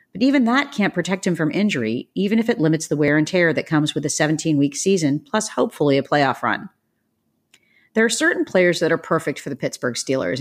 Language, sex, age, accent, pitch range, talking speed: English, female, 40-59, American, 150-200 Hz, 225 wpm